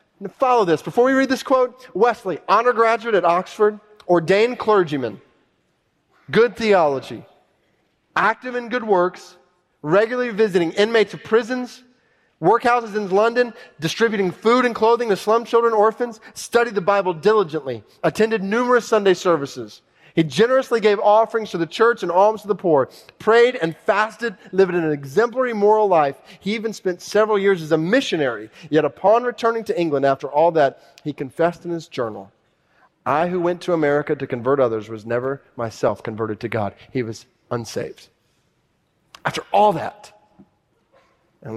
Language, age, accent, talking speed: English, 30-49, American, 155 wpm